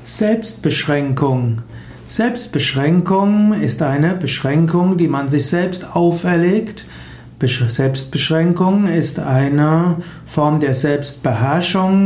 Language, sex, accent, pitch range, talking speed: German, male, German, 140-180 Hz, 80 wpm